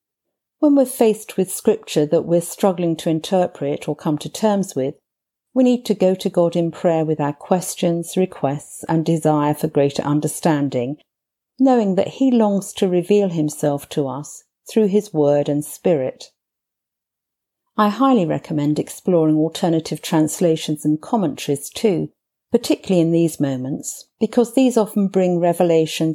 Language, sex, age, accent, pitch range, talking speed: English, female, 50-69, British, 155-195 Hz, 145 wpm